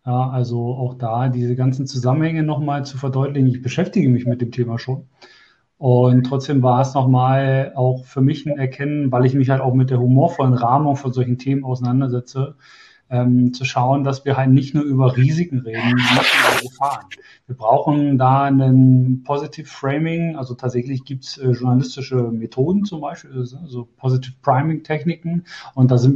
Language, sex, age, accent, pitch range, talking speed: German, male, 40-59, German, 125-140 Hz, 175 wpm